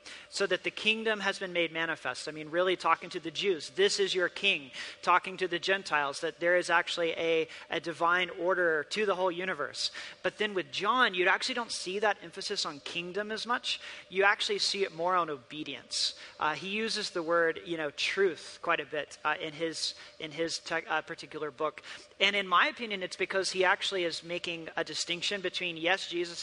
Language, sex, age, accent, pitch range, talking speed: English, male, 40-59, American, 165-195 Hz, 205 wpm